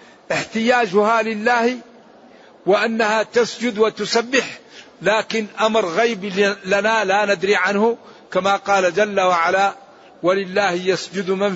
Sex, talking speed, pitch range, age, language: male, 100 wpm, 175-220 Hz, 60-79, Arabic